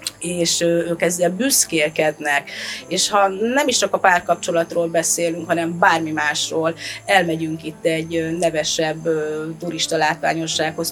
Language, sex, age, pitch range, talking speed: Hungarian, female, 30-49, 165-200 Hz, 115 wpm